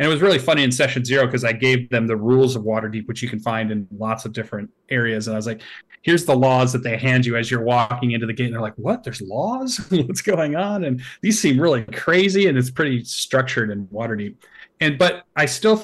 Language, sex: English, male